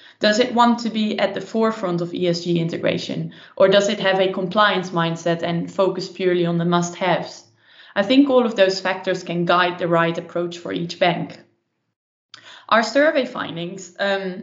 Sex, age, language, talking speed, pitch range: female, 20-39, English, 175 wpm, 175-195 Hz